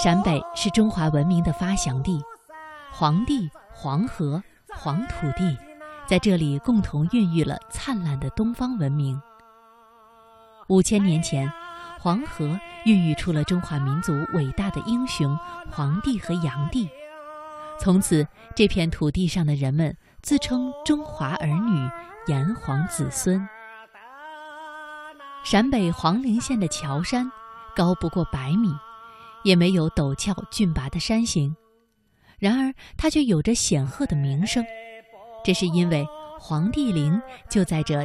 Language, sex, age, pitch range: Chinese, female, 20-39, 165-230 Hz